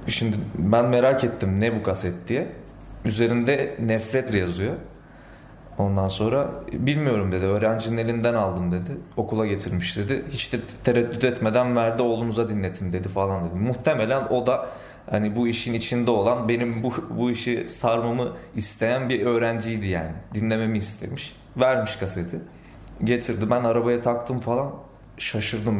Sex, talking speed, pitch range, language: male, 135 wpm, 100-120 Hz, Turkish